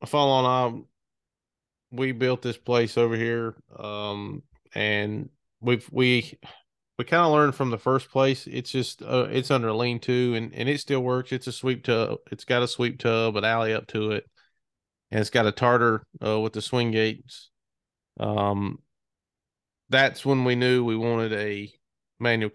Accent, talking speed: American, 180 wpm